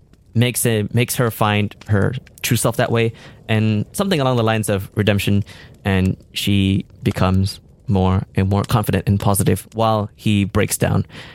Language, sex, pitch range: English, male, 100-120 Hz